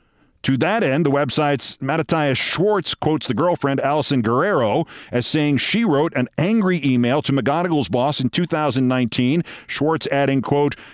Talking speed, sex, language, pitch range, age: 150 wpm, male, English, 125-165 Hz, 50-69